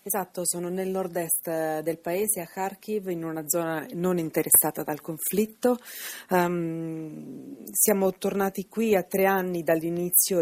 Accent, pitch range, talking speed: native, 155-180 Hz, 125 wpm